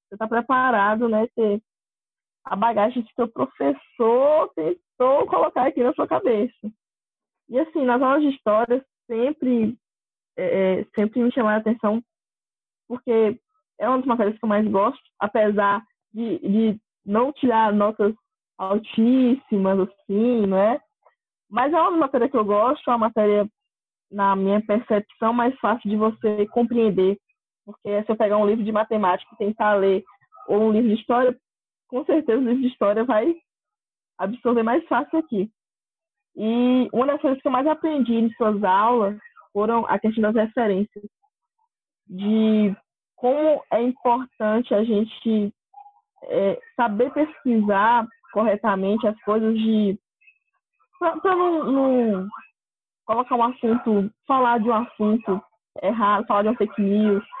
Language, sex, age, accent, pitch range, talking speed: Portuguese, female, 20-39, Brazilian, 210-260 Hz, 145 wpm